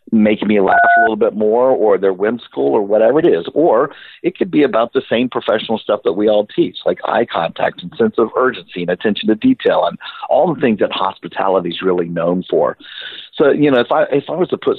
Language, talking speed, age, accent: English, 235 wpm, 50-69, American